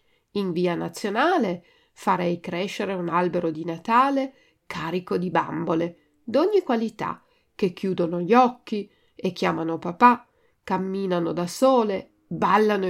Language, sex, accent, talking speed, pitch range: Italian, female, native, 115 wpm, 180-250 Hz